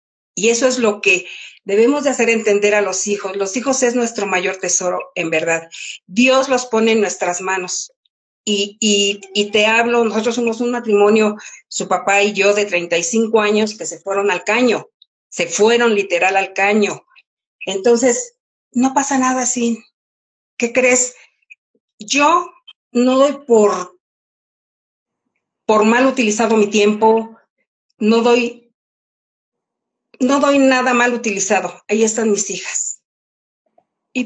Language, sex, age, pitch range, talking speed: Spanish, female, 50-69, 205-255 Hz, 140 wpm